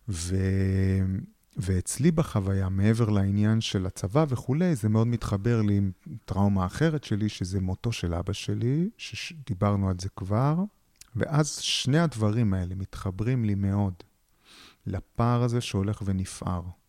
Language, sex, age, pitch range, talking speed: Hebrew, male, 30-49, 100-125 Hz, 130 wpm